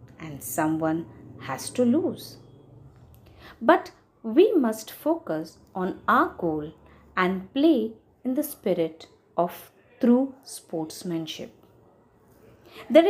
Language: Marathi